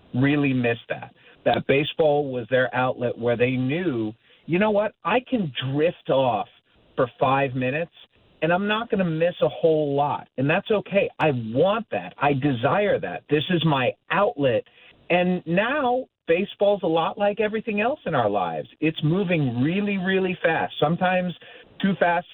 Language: English